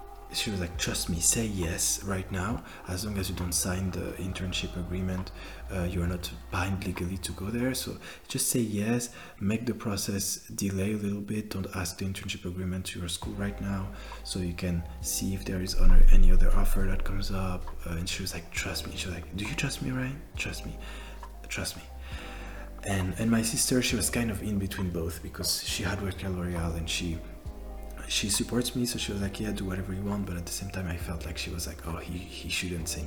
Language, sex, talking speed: English, male, 230 wpm